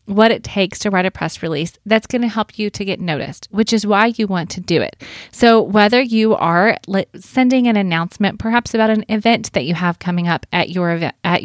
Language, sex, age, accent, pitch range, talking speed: English, female, 30-49, American, 180-225 Hz, 225 wpm